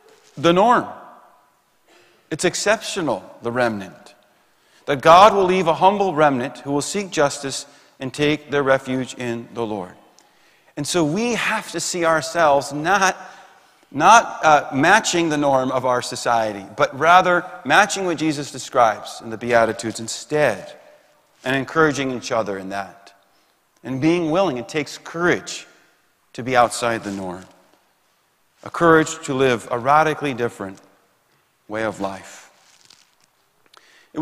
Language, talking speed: English, 135 wpm